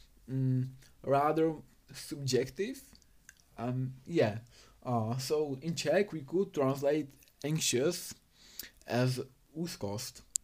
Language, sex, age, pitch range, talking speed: Czech, male, 20-39, 120-160 Hz, 90 wpm